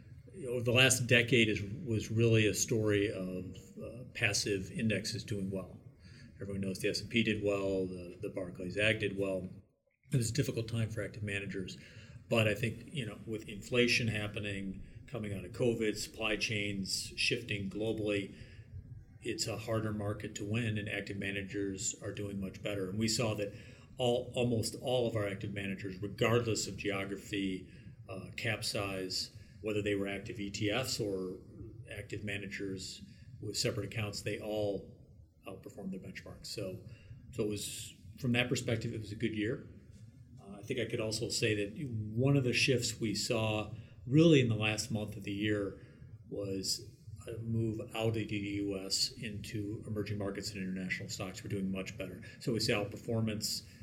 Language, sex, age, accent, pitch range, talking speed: English, male, 40-59, American, 100-115 Hz, 170 wpm